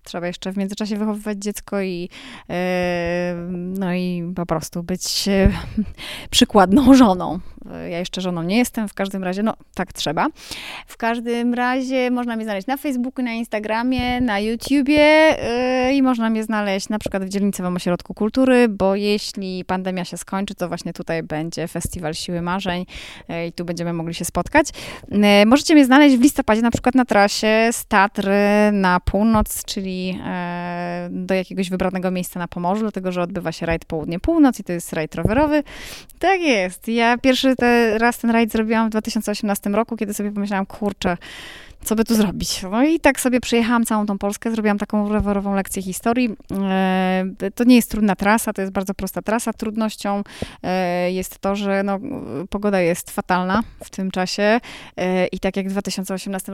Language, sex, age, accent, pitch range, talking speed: Polish, female, 20-39, native, 185-230 Hz, 165 wpm